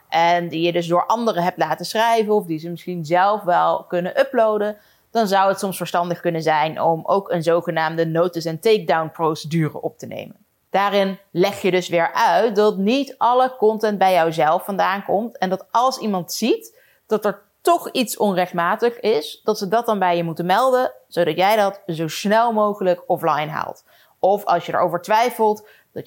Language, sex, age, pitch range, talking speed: Dutch, female, 30-49, 170-210 Hz, 185 wpm